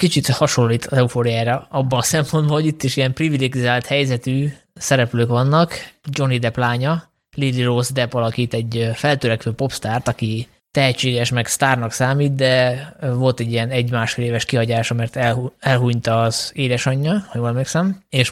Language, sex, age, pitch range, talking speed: Hungarian, male, 20-39, 120-140 Hz, 145 wpm